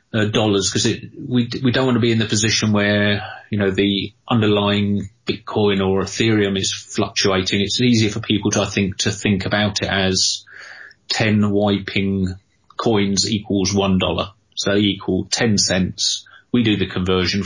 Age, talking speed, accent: 30-49, 165 wpm, British